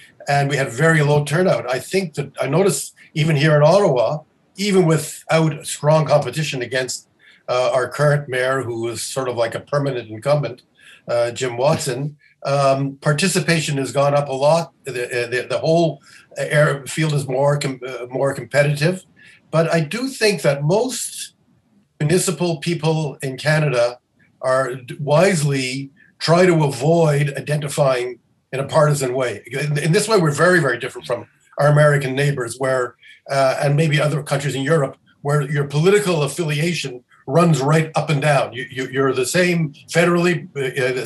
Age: 50-69